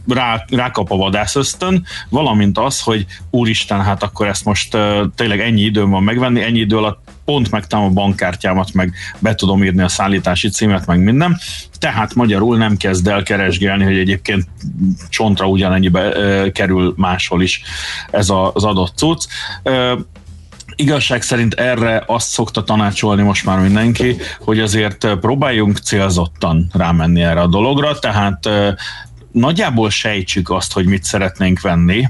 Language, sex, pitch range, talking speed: Hungarian, male, 95-110 Hz, 150 wpm